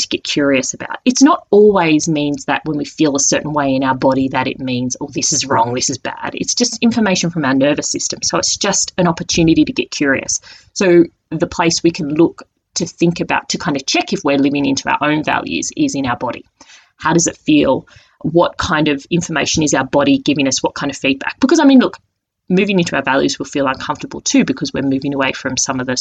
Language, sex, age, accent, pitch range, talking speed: English, female, 30-49, Australian, 135-180 Hz, 240 wpm